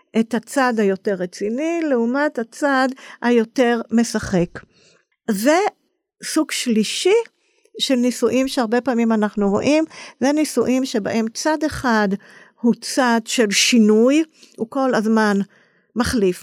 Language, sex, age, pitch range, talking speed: Hebrew, female, 50-69, 200-245 Hz, 110 wpm